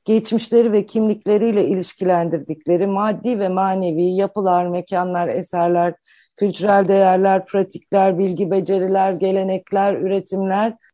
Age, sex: 50-69, female